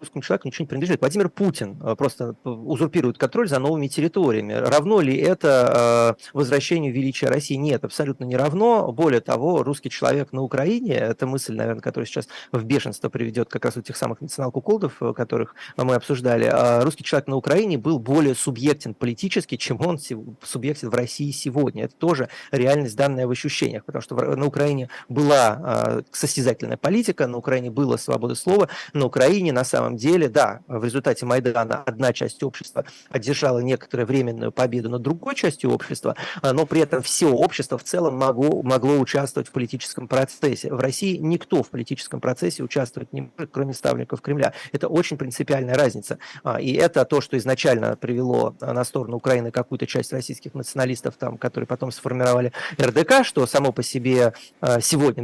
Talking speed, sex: 165 wpm, male